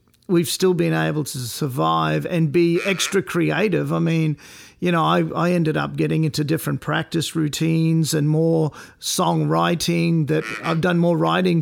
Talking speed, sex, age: 160 wpm, male, 50-69